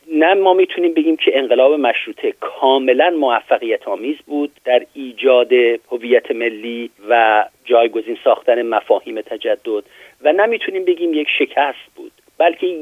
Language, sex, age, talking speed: Persian, male, 50-69, 125 wpm